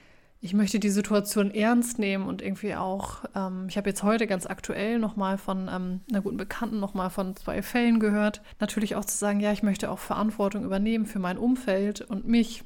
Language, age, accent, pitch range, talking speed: German, 20-39, German, 195-220 Hz, 200 wpm